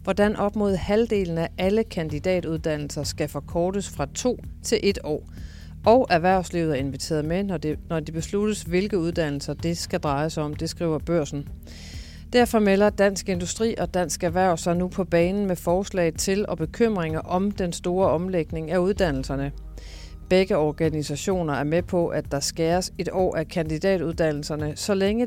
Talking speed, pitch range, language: 160 wpm, 150-185 Hz, Danish